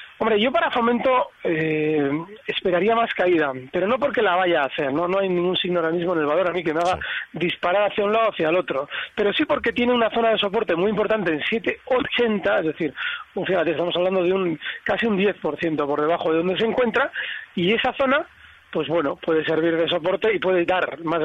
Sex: male